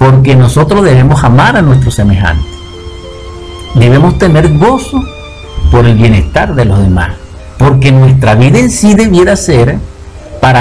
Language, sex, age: Spanish, male, 50-69